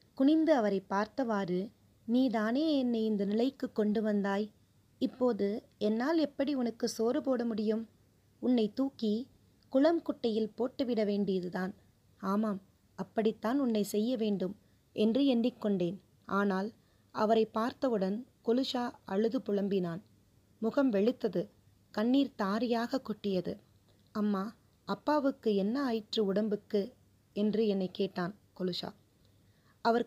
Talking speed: 100 wpm